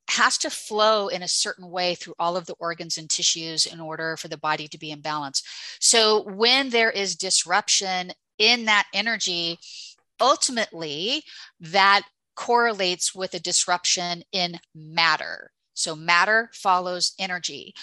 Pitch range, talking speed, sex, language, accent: 175-215 Hz, 145 wpm, female, English, American